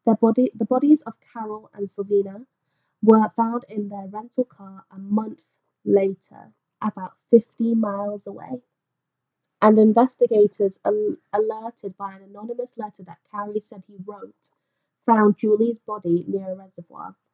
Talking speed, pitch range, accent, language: 130 wpm, 185-230 Hz, British, English